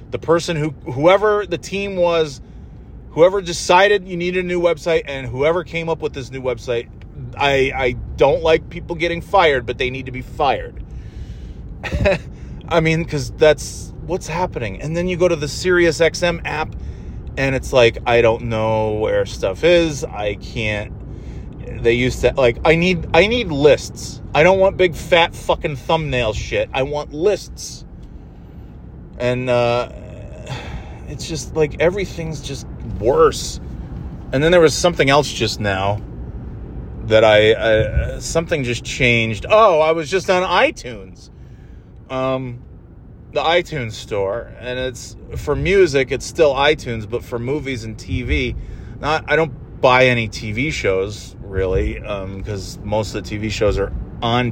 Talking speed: 155 wpm